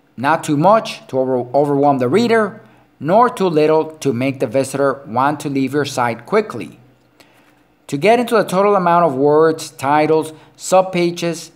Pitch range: 145-195 Hz